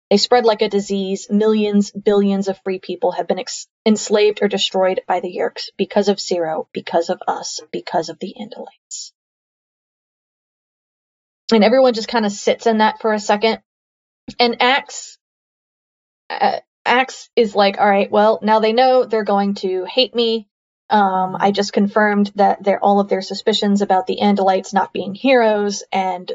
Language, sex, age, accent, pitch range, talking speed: English, female, 20-39, American, 200-230 Hz, 165 wpm